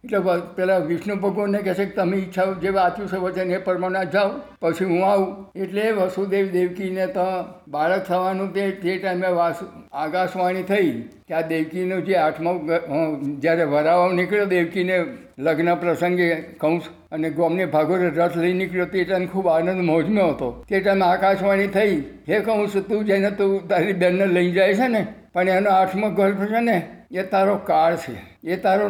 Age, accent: 60-79, native